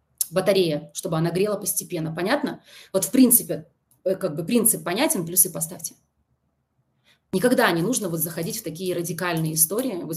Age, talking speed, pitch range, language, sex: 20-39, 150 wpm, 175-210 Hz, Russian, female